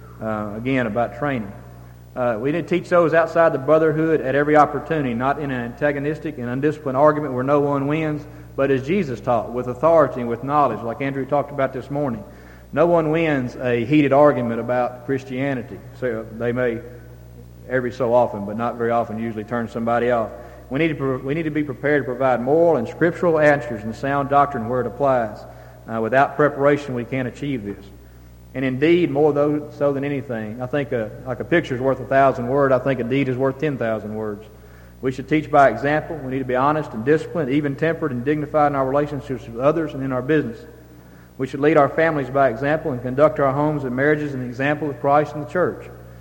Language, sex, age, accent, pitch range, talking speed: English, male, 40-59, American, 120-150 Hz, 205 wpm